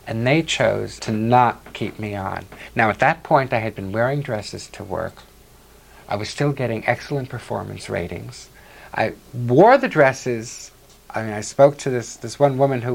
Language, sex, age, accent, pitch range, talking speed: English, male, 50-69, American, 110-135 Hz, 185 wpm